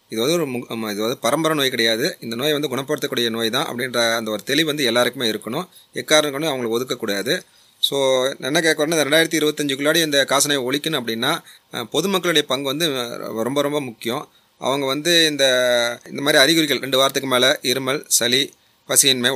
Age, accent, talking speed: 30-49, native, 160 wpm